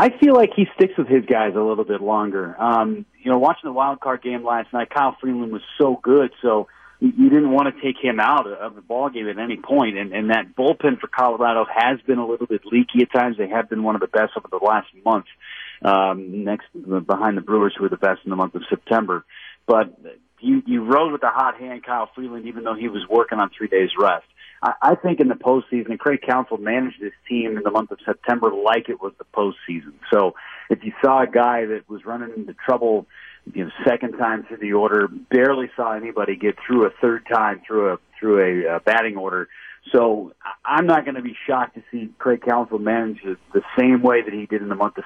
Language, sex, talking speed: English, male, 235 wpm